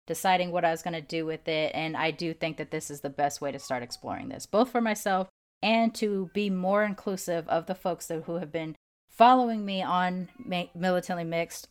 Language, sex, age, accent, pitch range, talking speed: English, female, 30-49, American, 160-190 Hz, 215 wpm